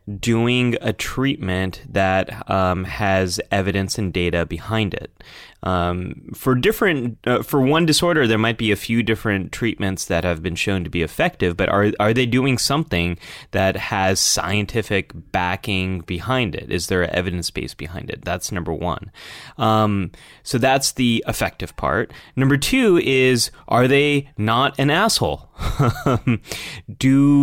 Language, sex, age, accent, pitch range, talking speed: English, male, 20-39, American, 95-130 Hz, 150 wpm